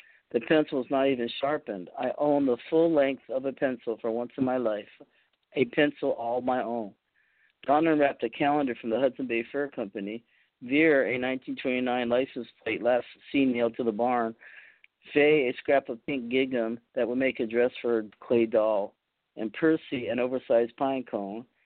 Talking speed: 185 wpm